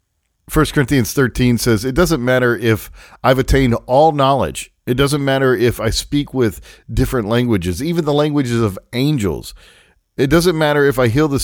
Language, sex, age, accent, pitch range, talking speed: English, male, 50-69, American, 95-130 Hz, 175 wpm